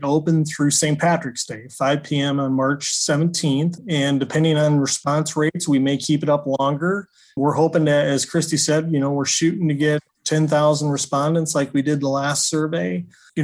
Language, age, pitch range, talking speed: English, 30-49, 140-160 Hz, 190 wpm